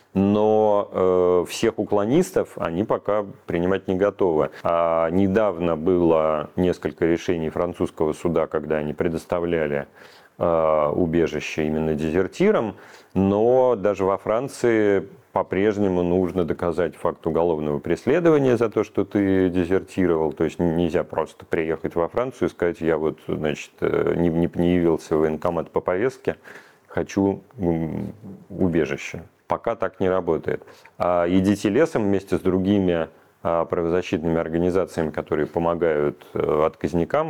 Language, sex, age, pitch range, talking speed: Russian, male, 40-59, 80-95 Hz, 110 wpm